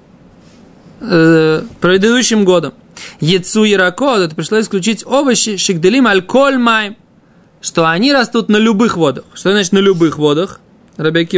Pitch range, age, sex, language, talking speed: 160-215 Hz, 20-39, male, Russian, 115 wpm